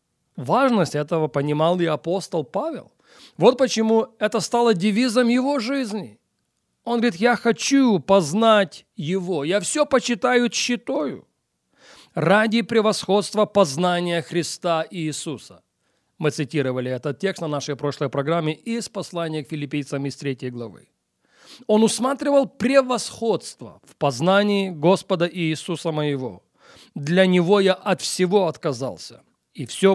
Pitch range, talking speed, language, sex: 150-210 Hz, 120 wpm, English, male